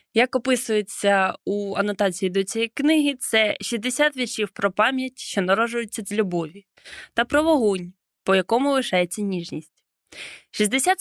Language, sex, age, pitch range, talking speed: Ukrainian, female, 20-39, 195-260 Hz, 130 wpm